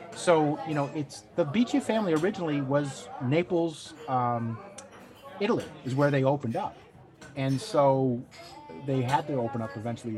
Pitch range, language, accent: 110-135 Hz, English, American